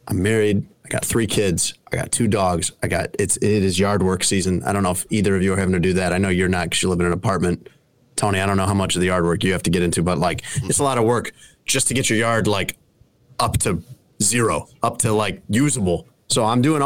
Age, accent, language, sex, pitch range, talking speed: 30-49, American, English, male, 95-125 Hz, 280 wpm